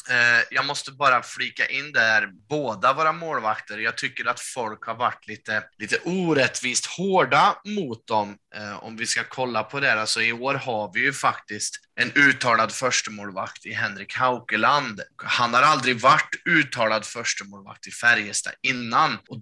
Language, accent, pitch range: Swedish, native, 115-140 Hz